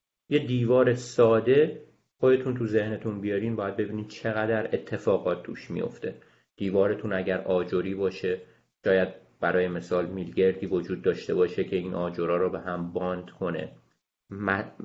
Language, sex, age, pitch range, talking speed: Persian, male, 30-49, 95-120 Hz, 135 wpm